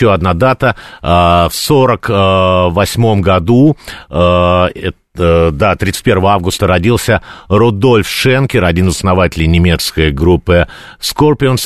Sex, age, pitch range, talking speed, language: male, 50-69, 90-120 Hz, 95 wpm, Russian